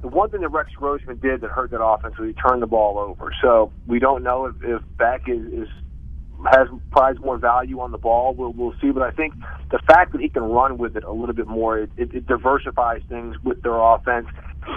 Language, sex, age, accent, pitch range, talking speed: English, male, 40-59, American, 110-135 Hz, 240 wpm